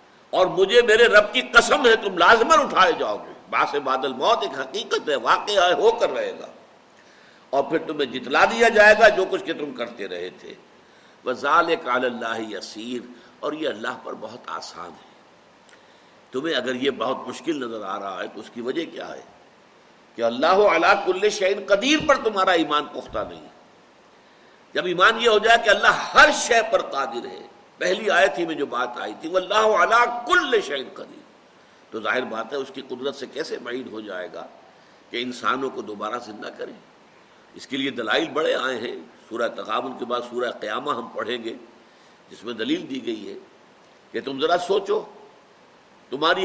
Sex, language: male, Urdu